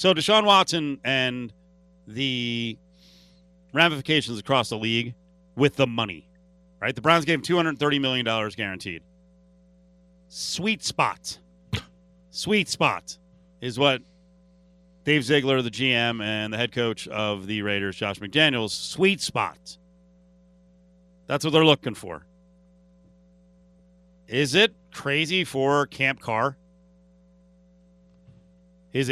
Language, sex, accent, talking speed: English, male, American, 110 wpm